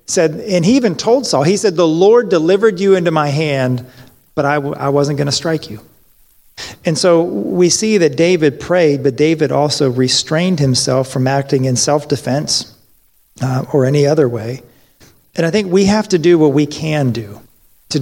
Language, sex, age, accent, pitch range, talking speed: English, male, 40-59, American, 130-160 Hz, 190 wpm